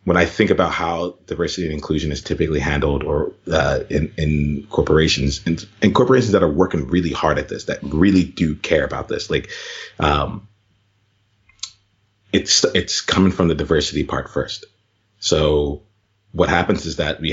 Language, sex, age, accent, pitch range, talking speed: English, male, 30-49, American, 75-100 Hz, 165 wpm